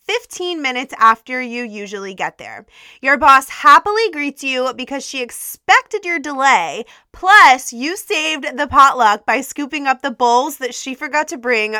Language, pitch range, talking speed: English, 225-310 Hz, 165 wpm